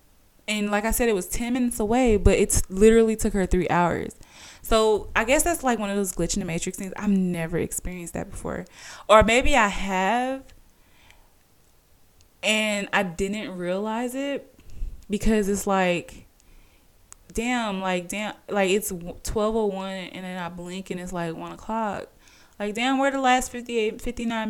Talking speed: 165 wpm